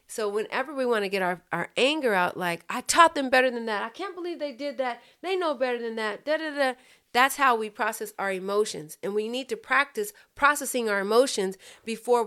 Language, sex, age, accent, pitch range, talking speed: English, female, 40-59, American, 185-235 Hz, 225 wpm